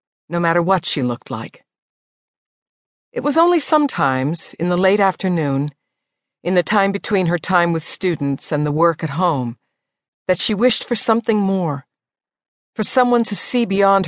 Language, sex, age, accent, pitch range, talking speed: English, female, 50-69, American, 155-220 Hz, 160 wpm